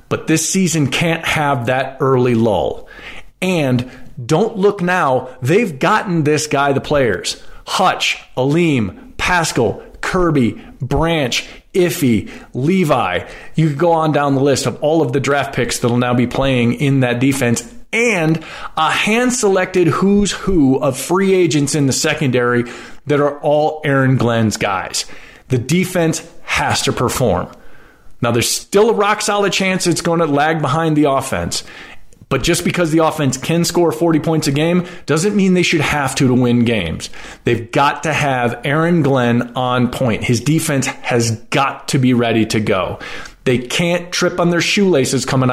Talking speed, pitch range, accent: 165 wpm, 125-165 Hz, American